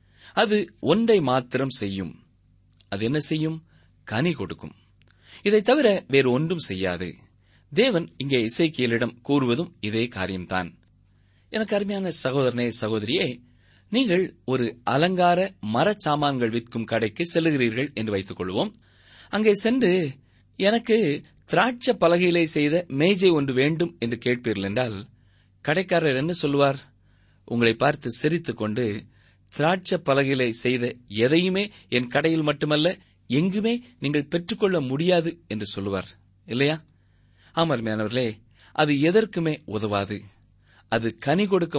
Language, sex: Tamil, male